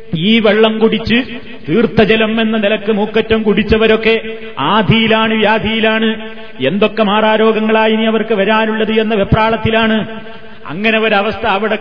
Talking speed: 95 wpm